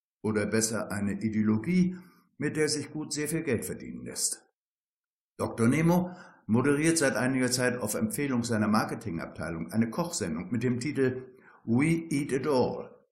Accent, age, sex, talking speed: German, 60-79, male, 145 wpm